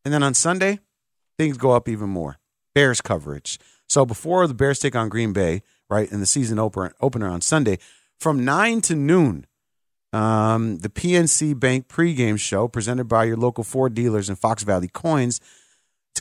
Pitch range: 110-150 Hz